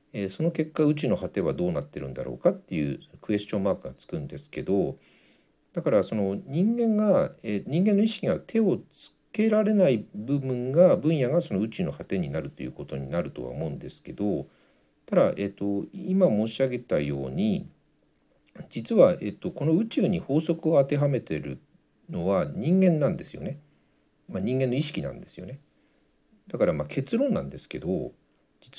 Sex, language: male, Japanese